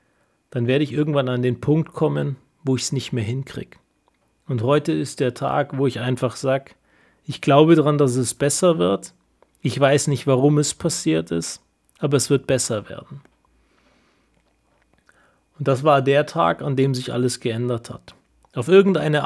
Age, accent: 30-49, German